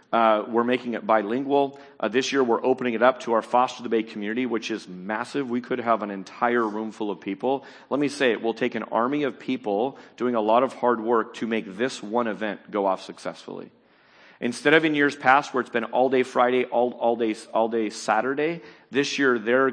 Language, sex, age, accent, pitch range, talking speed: English, male, 40-59, American, 115-160 Hz, 225 wpm